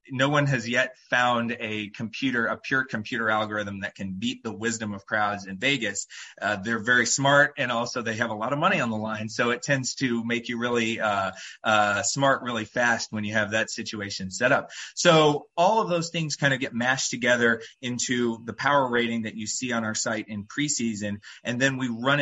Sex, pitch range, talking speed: male, 110-130 Hz, 215 wpm